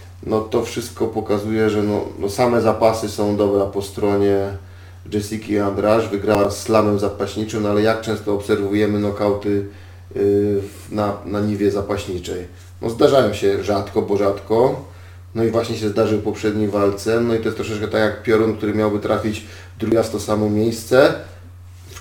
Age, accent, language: 40-59, native, Polish